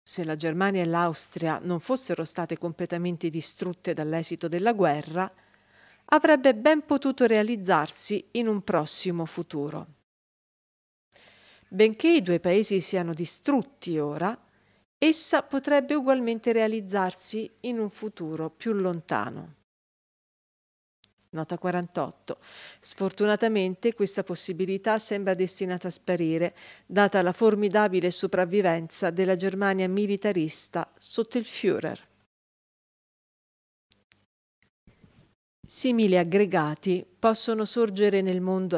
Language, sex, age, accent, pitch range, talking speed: Italian, female, 50-69, native, 175-220 Hz, 95 wpm